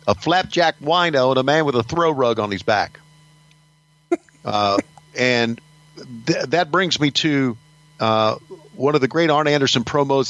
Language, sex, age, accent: English, male, 50-69, American